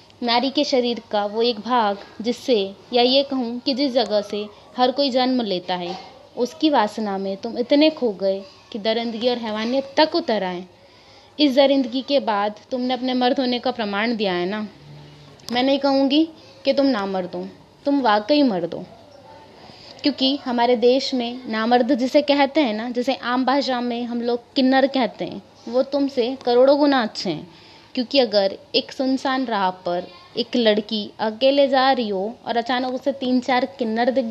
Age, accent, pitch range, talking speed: 20-39, native, 210-265 Hz, 175 wpm